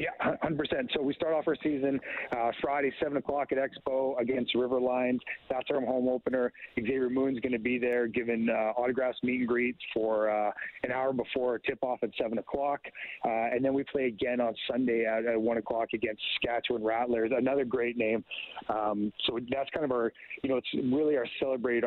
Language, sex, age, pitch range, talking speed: English, male, 30-49, 115-130 Hz, 195 wpm